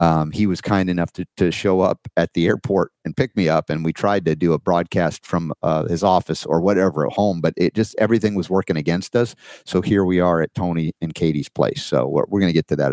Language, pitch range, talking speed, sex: English, 80-100 Hz, 260 wpm, male